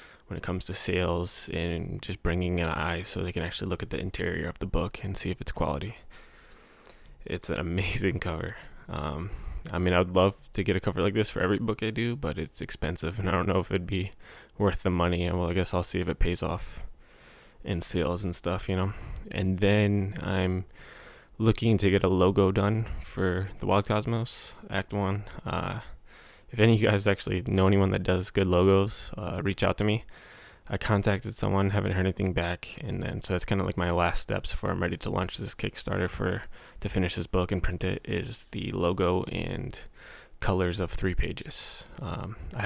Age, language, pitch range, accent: 20-39, English, 90-100 Hz, American